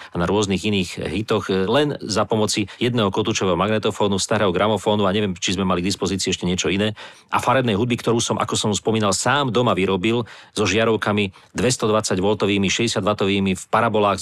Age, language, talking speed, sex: 40-59, Slovak, 175 wpm, male